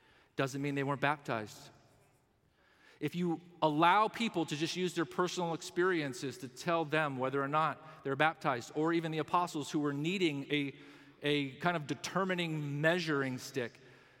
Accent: American